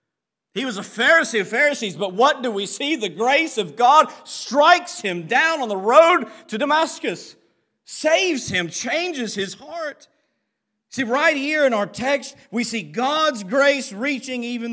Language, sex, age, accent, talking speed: English, male, 40-59, American, 165 wpm